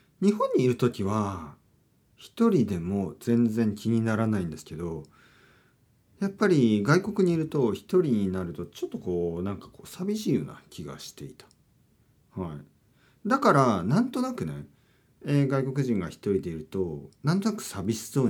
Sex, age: male, 40-59